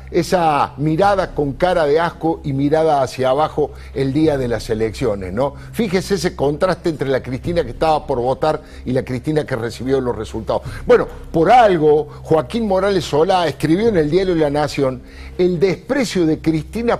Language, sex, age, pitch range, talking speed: Spanish, male, 50-69, 135-190 Hz, 175 wpm